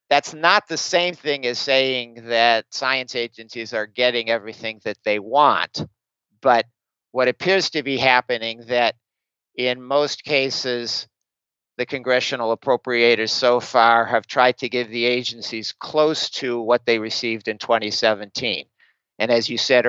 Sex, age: male, 50-69